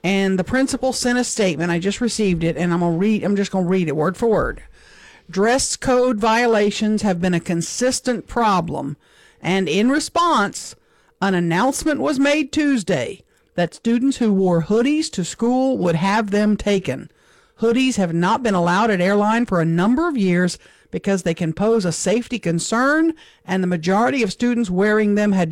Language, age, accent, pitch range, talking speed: English, 50-69, American, 180-250 Hz, 180 wpm